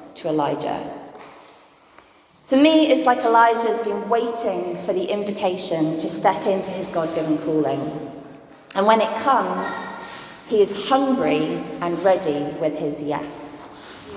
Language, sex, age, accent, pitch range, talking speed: English, female, 30-49, British, 175-235 Hz, 125 wpm